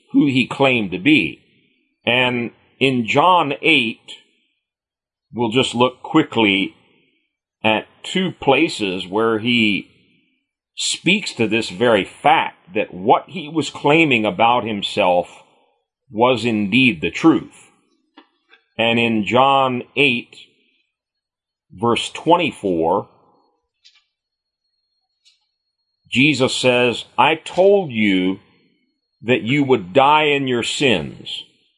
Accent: American